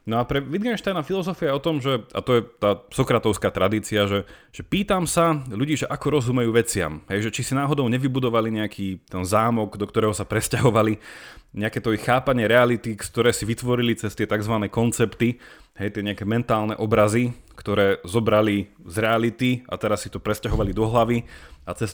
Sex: male